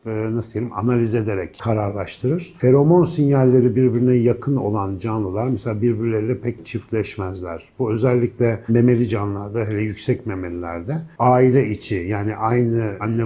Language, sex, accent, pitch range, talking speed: Turkish, male, native, 105-130 Hz, 120 wpm